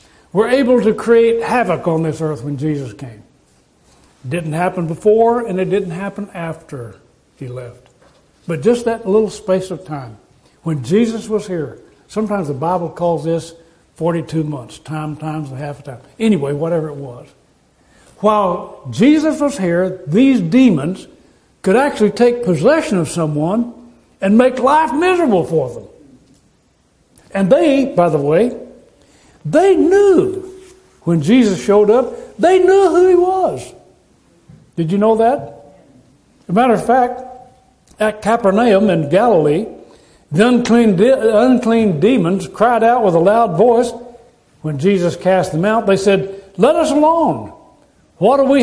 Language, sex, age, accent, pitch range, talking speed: English, male, 60-79, American, 165-240 Hz, 150 wpm